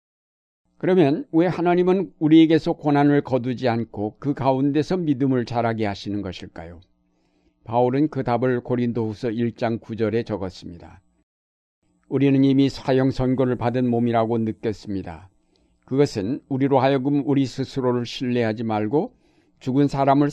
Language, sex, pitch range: Korean, male, 110-135 Hz